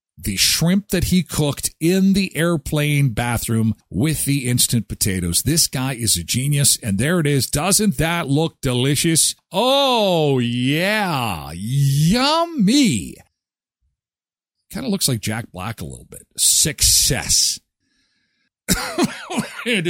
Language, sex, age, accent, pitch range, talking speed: English, male, 50-69, American, 110-160 Hz, 120 wpm